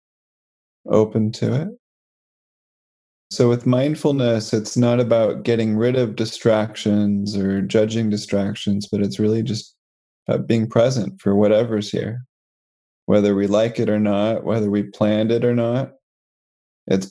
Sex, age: male, 20-39